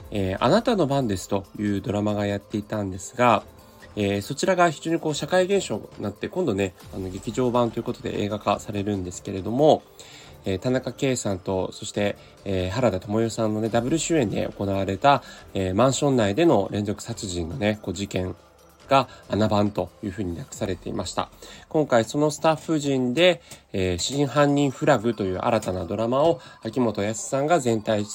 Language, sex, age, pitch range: Japanese, male, 20-39, 100-135 Hz